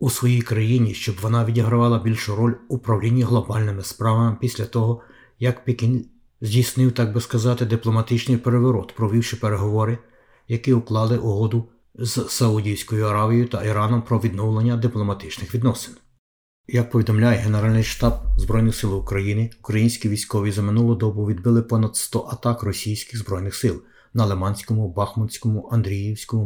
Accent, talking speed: native, 135 wpm